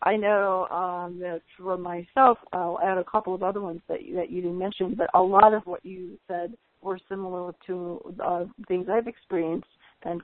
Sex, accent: female, American